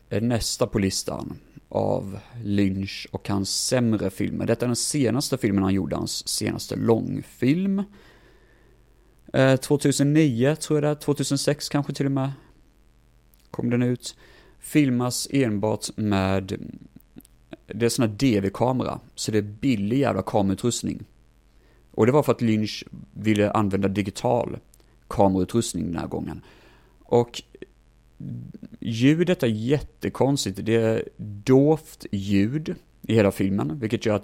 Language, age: Swedish, 30-49